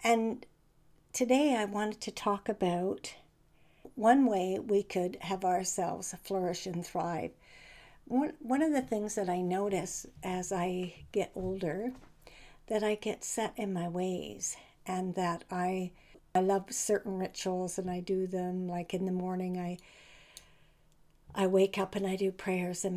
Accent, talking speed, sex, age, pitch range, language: American, 150 wpm, female, 60-79, 180-205 Hz, English